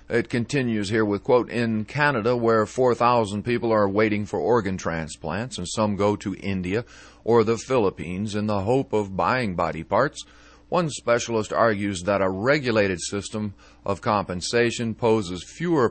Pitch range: 95-120 Hz